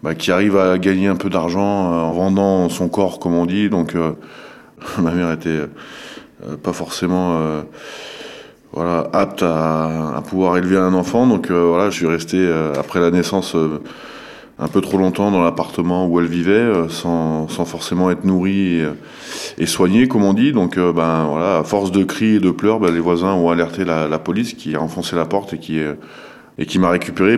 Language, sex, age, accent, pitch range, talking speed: French, male, 20-39, French, 80-95 Hz, 215 wpm